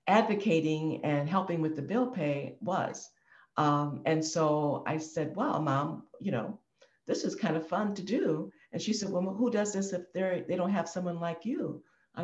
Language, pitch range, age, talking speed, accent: English, 150-180 Hz, 60-79, 190 wpm, American